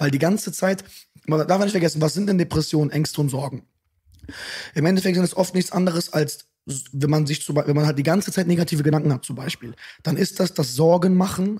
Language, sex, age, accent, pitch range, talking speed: German, male, 20-39, German, 150-175 Hz, 215 wpm